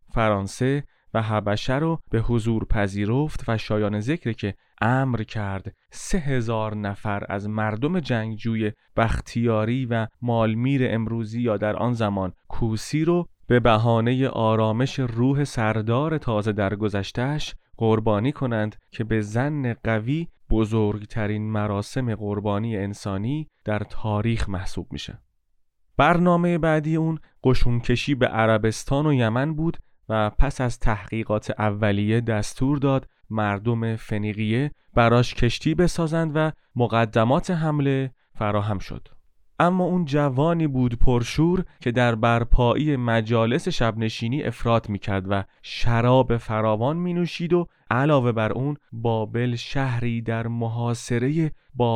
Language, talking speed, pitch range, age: Persian, 115 wpm, 110-135 Hz, 30-49